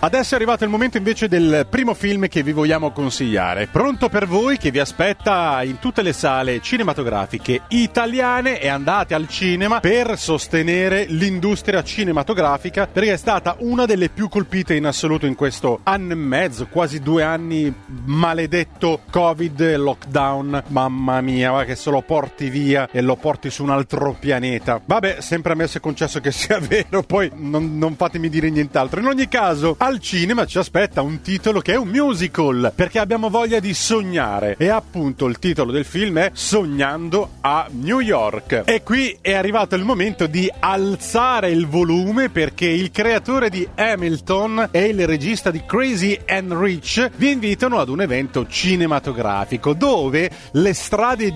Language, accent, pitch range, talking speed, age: Italian, native, 150-215 Hz, 165 wpm, 30-49